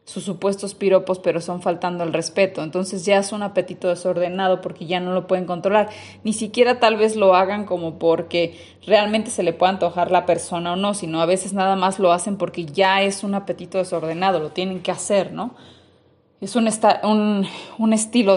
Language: Spanish